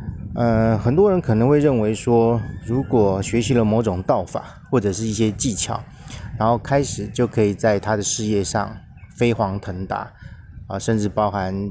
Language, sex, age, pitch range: Chinese, male, 30-49, 100-120 Hz